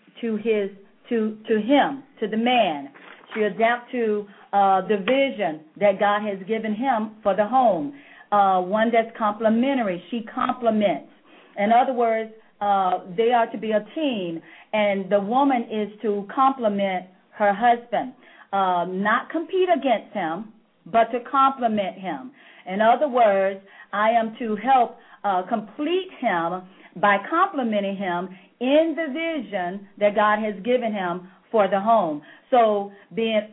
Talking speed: 145 wpm